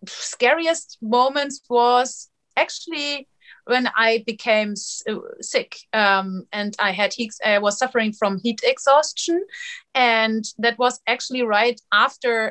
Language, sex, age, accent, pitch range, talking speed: English, female, 30-49, German, 205-245 Hz, 120 wpm